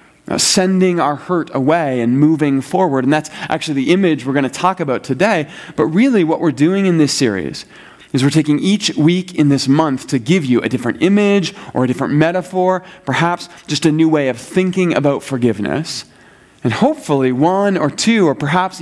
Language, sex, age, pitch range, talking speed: English, male, 30-49, 125-170 Hz, 190 wpm